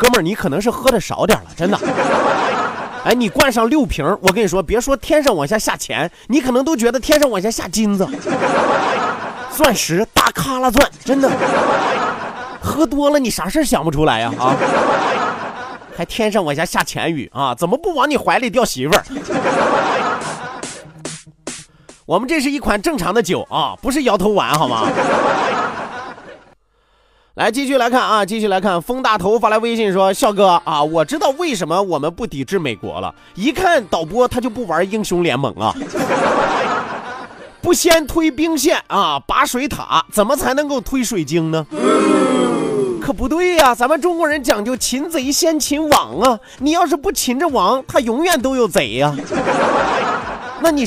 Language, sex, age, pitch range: Chinese, male, 30-49, 200-295 Hz